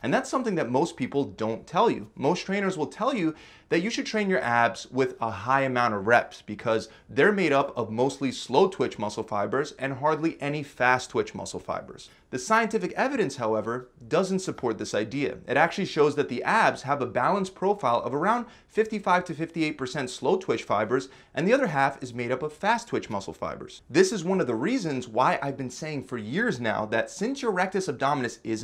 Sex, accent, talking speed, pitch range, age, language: male, American, 210 wpm, 125-185 Hz, 30-49, English